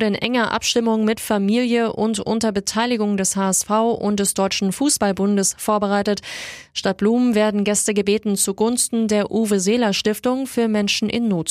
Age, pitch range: 20-39, 195-240 Hz